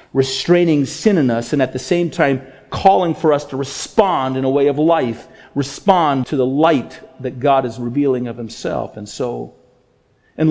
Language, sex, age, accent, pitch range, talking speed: English, male, 50-69, American, 140-195 Hz, 185 wpm